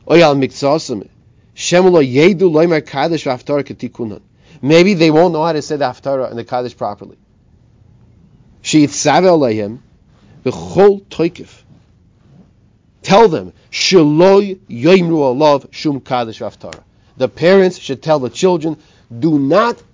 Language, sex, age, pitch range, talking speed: English, male, 40-59, 125-185 Hz, 70 wpm